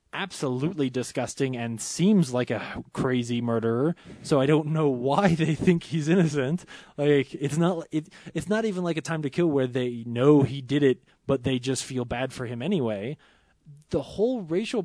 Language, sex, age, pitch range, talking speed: English, male, 20-39, 130-175 Hz, 180 wpm